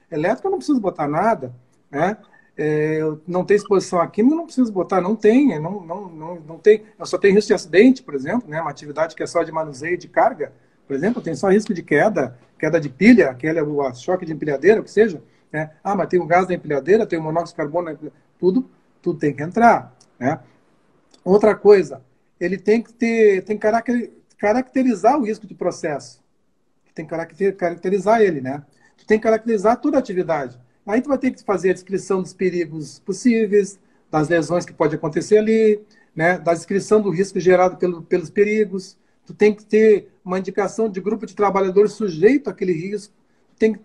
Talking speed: 200 wpm